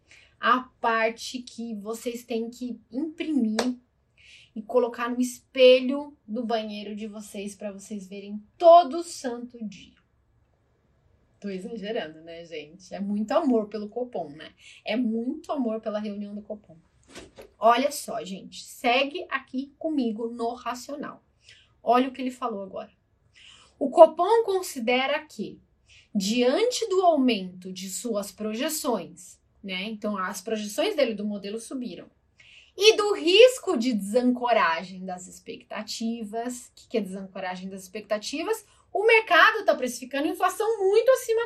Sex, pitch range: female, 220-340 Hz